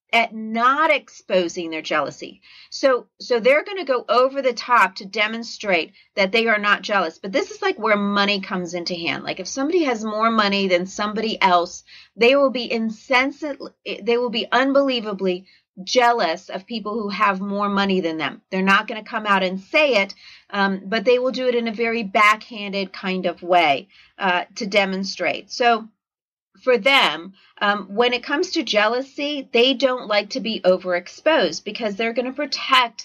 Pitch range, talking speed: 190-245 Hz, 185 wpm